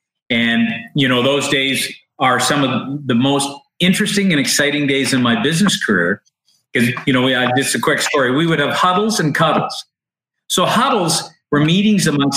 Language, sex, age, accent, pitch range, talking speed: English, male, 50-69, American, 130-195 Hz, 180 wpm